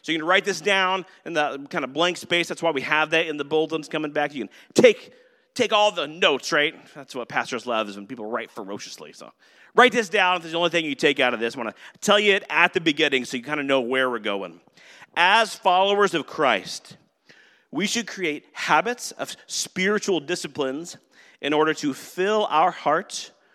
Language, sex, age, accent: English, male, 40-59, American